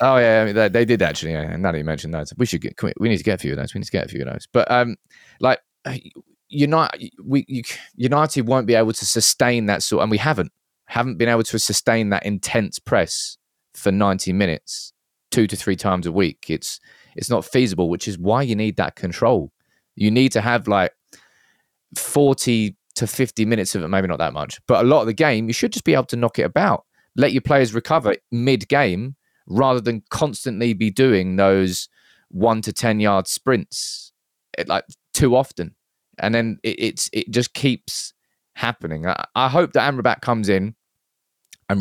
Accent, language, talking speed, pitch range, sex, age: British, English, 205 wpm, 95-120 Hz, male, 20-39